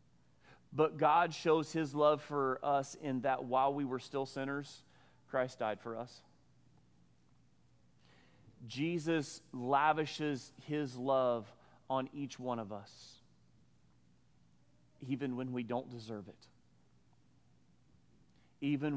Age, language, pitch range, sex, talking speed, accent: 40-59, English, 105-140 Hz, male, 110 wpm, American